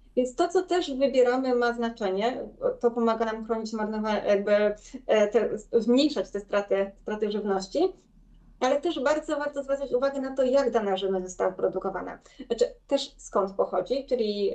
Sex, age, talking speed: female, 20-39, 140 wpm